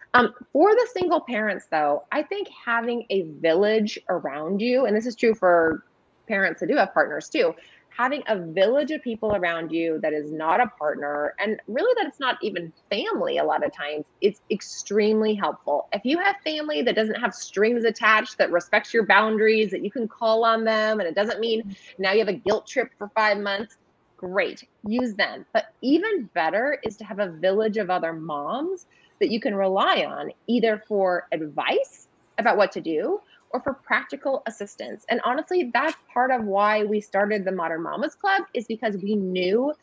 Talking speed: 195 wpm